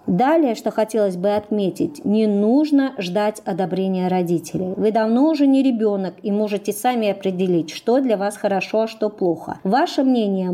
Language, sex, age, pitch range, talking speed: Russian, male, 40-59, 200-265 Hz, 160 wpm